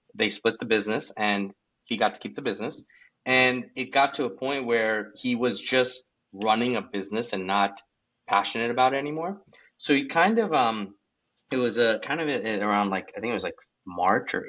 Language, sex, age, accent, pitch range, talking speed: English, male, 30-49, American, 100-125 Hz, 205 wpm